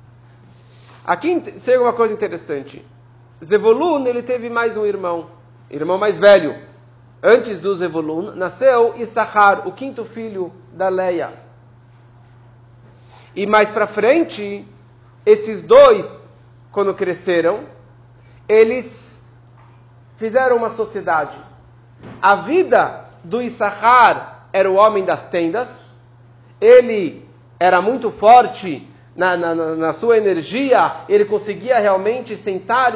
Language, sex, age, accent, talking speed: Portuguese, male, 40-59, Brazilian, 105 wpm